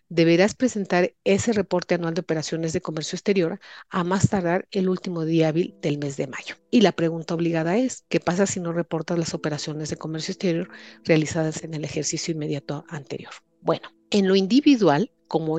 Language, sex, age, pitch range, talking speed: Spanish, female, 40-59, 160-190 Hz, 180 wpm